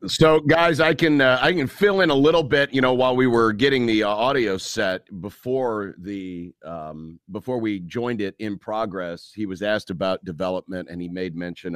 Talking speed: 205 wpm